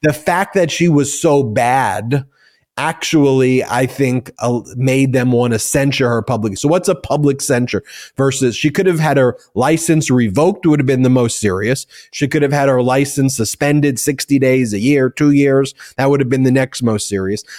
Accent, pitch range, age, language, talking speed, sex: American, 125-145 Hz, 30-49, English, 200 wpm, male